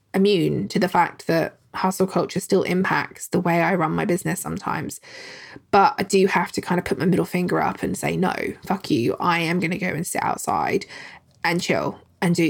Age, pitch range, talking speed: 20-39, 175-215 Hz, 215 wpm